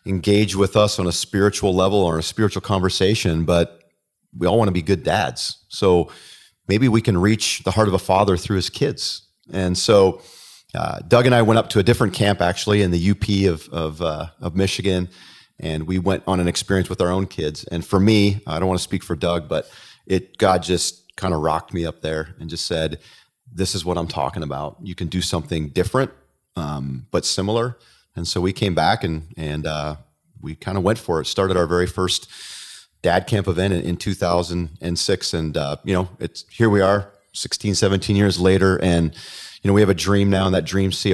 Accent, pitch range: American, 85-100 Hz